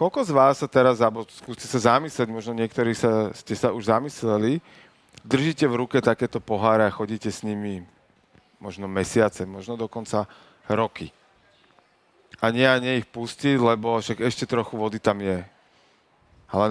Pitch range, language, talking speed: 110-125 Hz, Slovak, 155 wpm